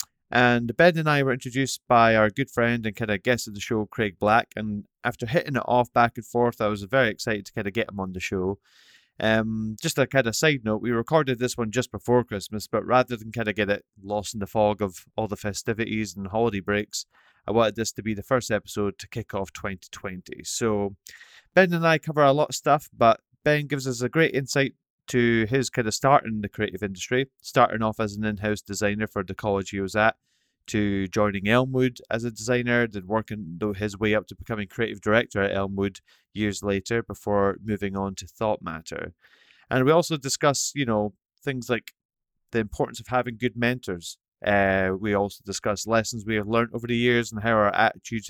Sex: male